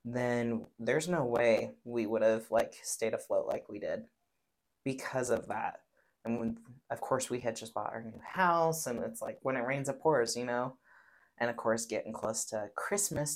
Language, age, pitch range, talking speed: English, 30-49, 115-135 Hz, 200 wpm